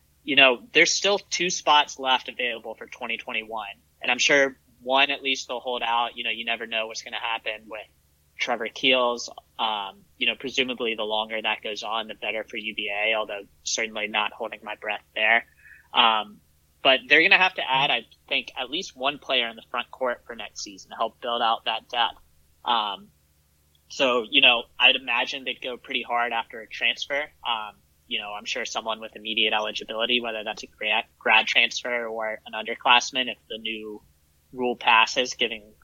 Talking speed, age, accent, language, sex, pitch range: 190 wpm, 20-39, American, English, male, 105-135 Hz